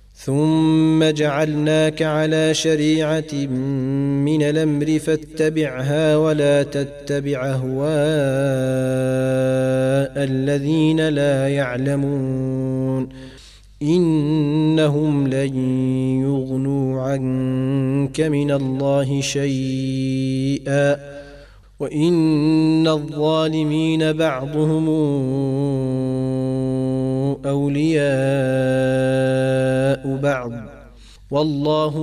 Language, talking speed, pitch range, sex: Arabic, 50 wpm, 130-150 Hz, male